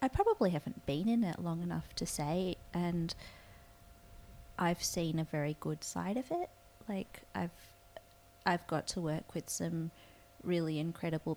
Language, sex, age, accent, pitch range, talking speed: English, female, 20-39, Australian, 145-165 Hz, 155 wpm